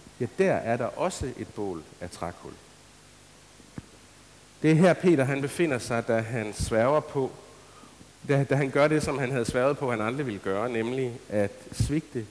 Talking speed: 180 wpm